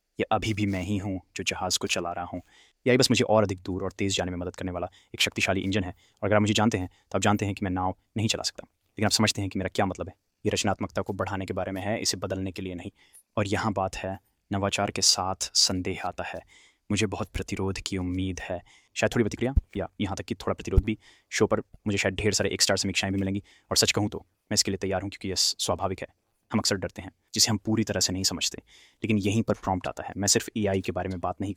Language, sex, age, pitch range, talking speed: Hindi, male, 20-39, 95-105 Hz, 270 wpm